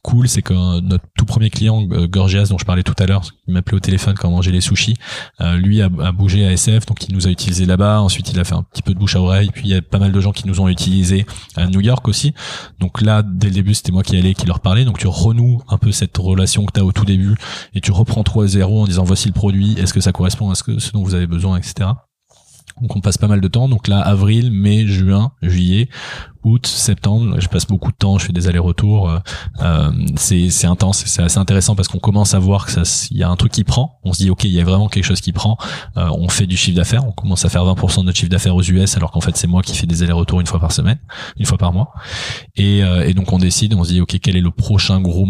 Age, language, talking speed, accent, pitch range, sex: 20-39, French, 280 wpm, French, 90-105 Hz, male